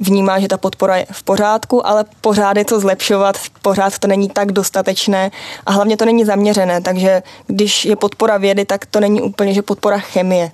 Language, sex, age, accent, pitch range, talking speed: Czech, female, 20-39, native, 185-205 Hz, 195 wpm